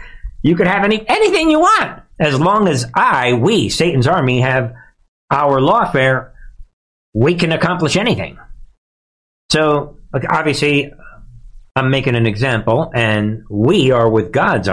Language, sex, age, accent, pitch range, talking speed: English, male, 60-79, American, 110-160 Hz, 130 wpm